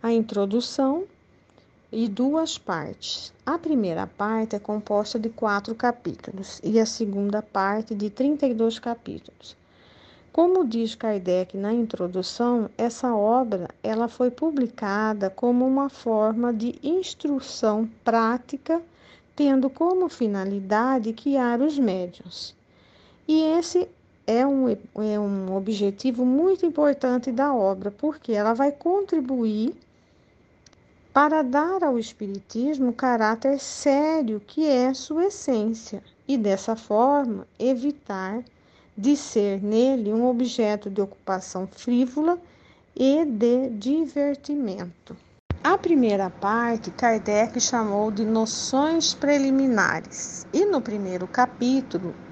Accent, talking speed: Brazilian, 110 wpm